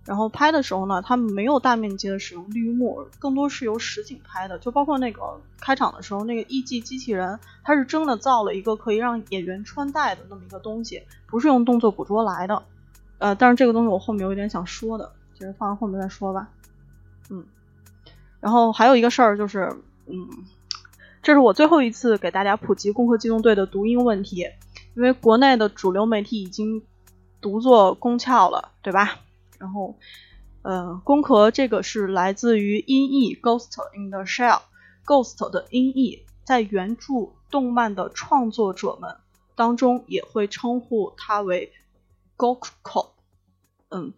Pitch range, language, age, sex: 195-245 Hz, Chinese, 20-39, female